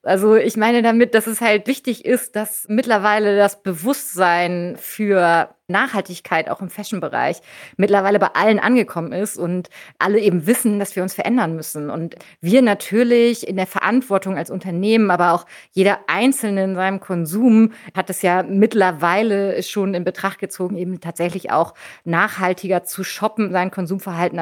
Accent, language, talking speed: German, German, 155 wpm